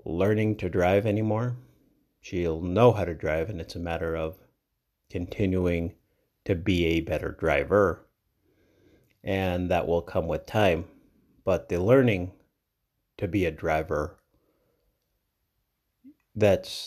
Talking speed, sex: 120 wpm, male